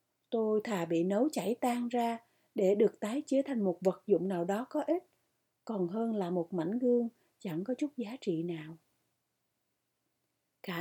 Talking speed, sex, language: 180 wpm, female, Vietnamese